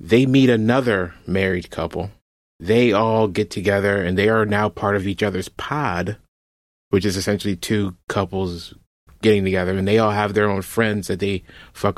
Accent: American